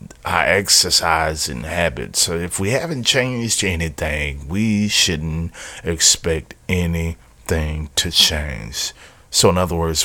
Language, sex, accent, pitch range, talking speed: English, male, American, 80-100 Hz, 115 wpm